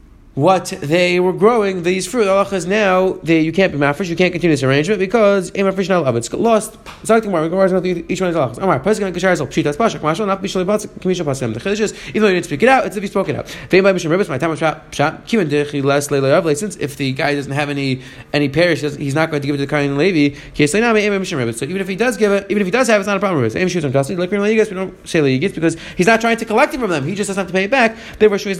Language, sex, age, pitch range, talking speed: English, male, 30-49, 160-205 Hz, 210 wpm